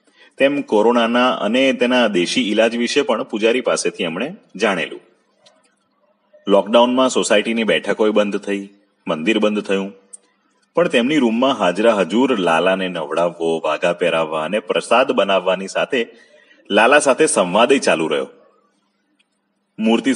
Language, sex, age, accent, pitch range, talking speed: Gujarati, male, 30-49, native, 95-120 Hz, 95 wpm